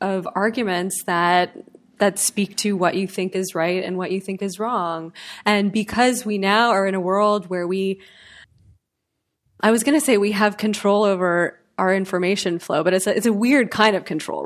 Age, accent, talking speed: 20-39, American, 200 wpm